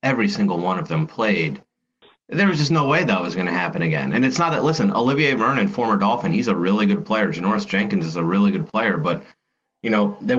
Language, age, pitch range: English, 30-49, 125-200 Hz